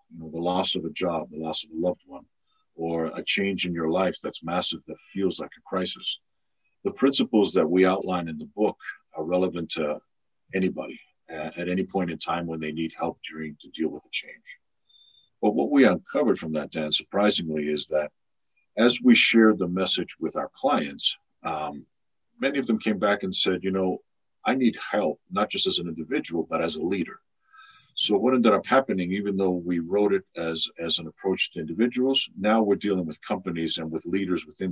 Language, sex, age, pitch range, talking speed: English, male, 50-69, 85-110 Hz, 205 wpm